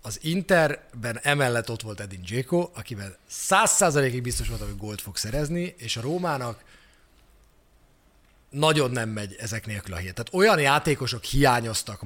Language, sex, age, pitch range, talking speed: Hungarian, male, 30-49, 110-140 Hz, 145 wpm